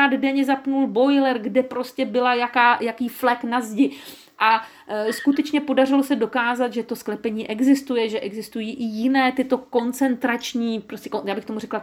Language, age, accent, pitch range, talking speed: Czech, 40-59, native, 200-260 Hz, 160 wpm